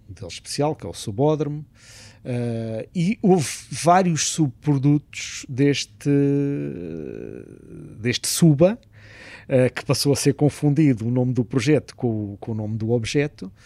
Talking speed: 130 wpm